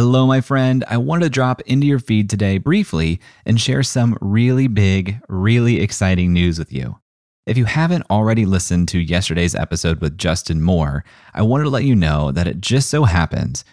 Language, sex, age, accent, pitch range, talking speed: English, male, 30-49, American, 85-120 Hz, 190 wpm